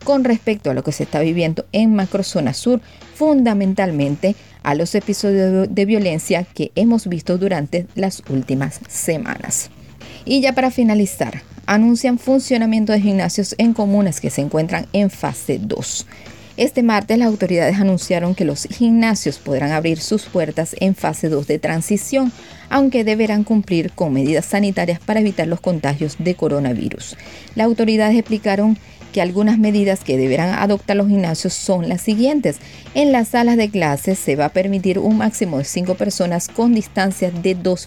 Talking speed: 160 wpm